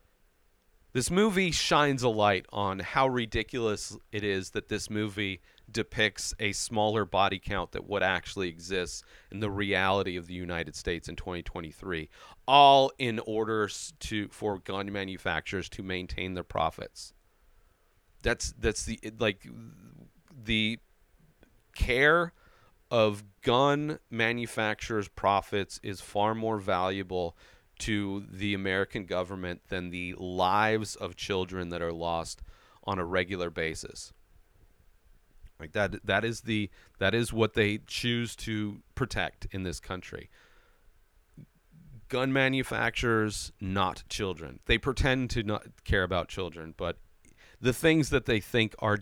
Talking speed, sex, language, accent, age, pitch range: 130 wpm, male, English, American, 40-59, 90-110 Hz